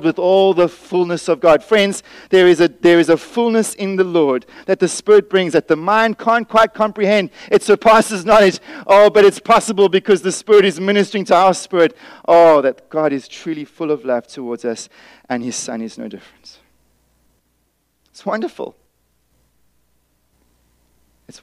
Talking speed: 170 wpm